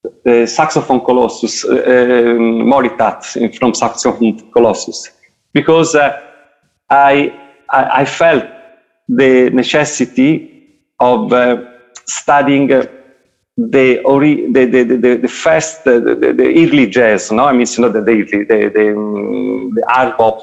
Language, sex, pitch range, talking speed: English, male, 120-175 Hz, 140 wpm